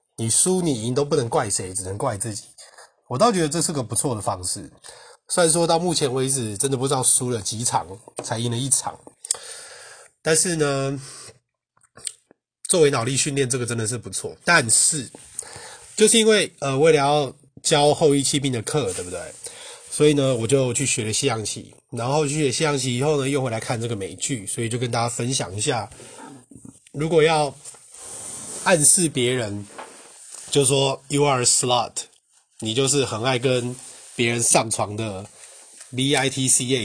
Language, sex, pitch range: Chinese, male, 120-150 Hz